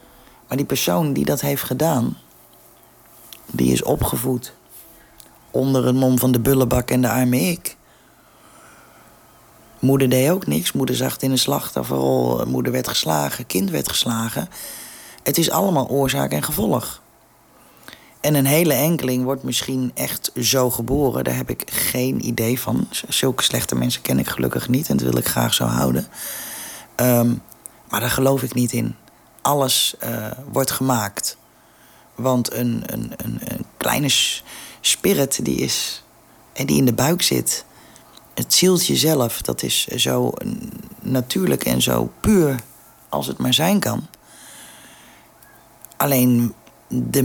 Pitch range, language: 110-135 Hz, Dutch